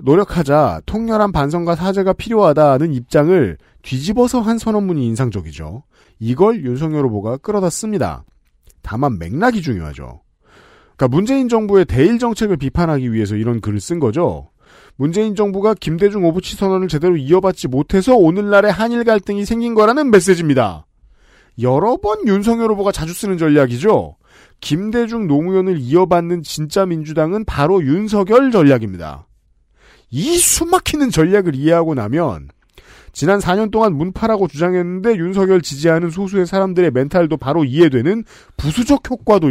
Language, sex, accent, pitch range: Korean, male, native, 145-215 Hz